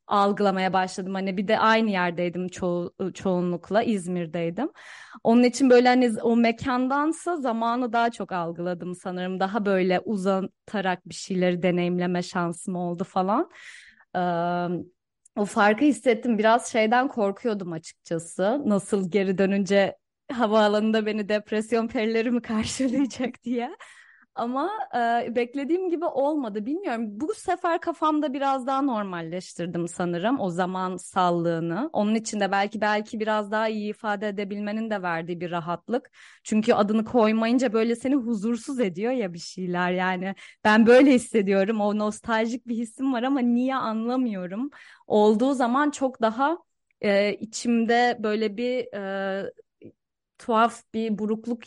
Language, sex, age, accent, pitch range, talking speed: Turkish, female, 30-49, native, 190-245 Hz, 130 wpm